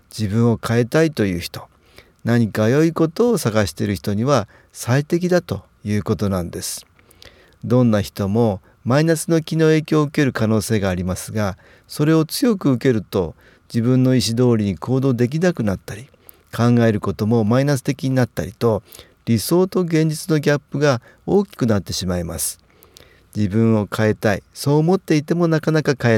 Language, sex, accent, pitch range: Japanese, male, native, 100-155 Hz